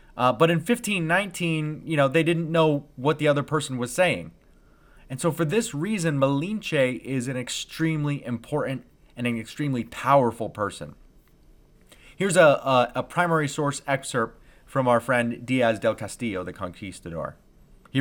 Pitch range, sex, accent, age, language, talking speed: 120-160 Hz, male, American, 30-49, English, 155 wpm